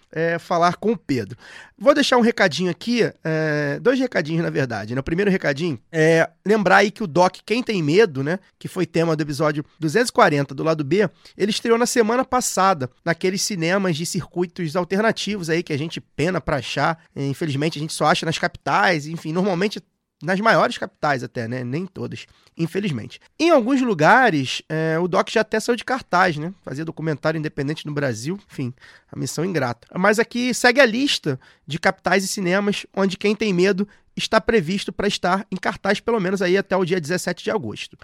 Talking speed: 190 wpm